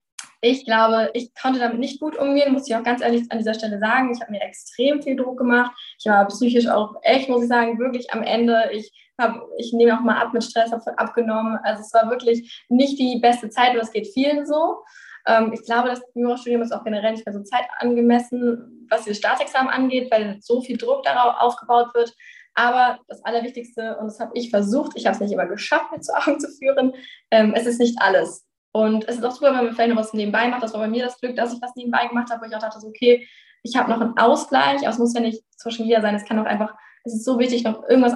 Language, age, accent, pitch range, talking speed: German, 10-29, German, 215-245 Hz, 245 wpm